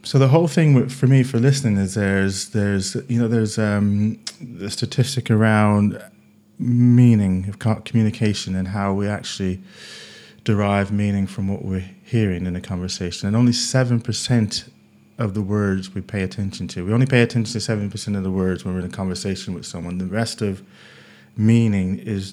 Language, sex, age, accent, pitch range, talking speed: English, male, 30-49, British, 95-115 Hz, 180 wpm